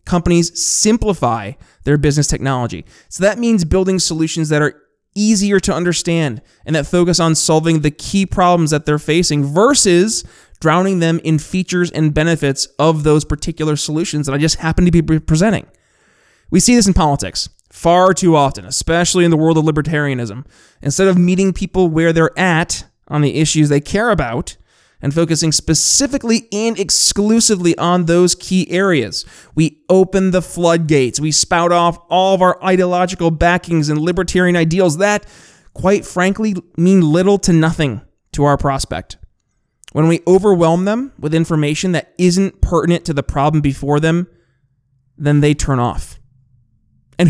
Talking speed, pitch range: 155 wpm, 150-185 Hz